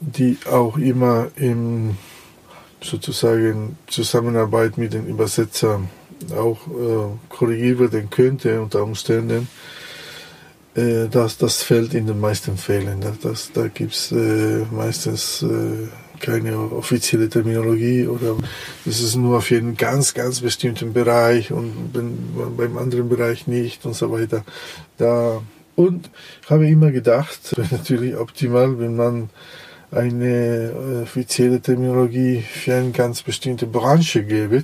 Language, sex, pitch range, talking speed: German, male, 115-125 Hz, 125 wpm